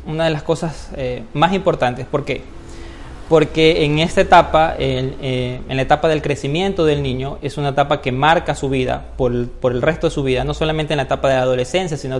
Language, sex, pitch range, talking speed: Spanish, male, 135-165 Hz, 220 wpm